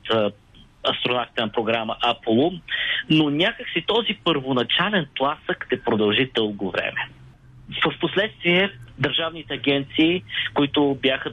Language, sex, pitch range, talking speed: Bulgarian, male, 130-170 Hz, 95 wpm